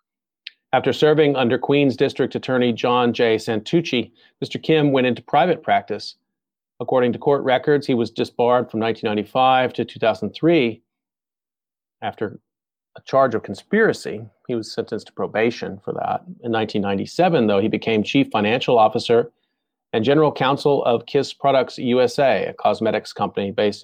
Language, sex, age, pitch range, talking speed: English, male, 40-59, 110-140 Hz, 145 wpm